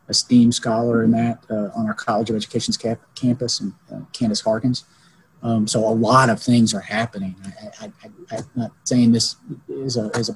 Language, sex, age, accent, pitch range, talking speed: English, male, 40-59, American, 115-135 Hz, 160 wpm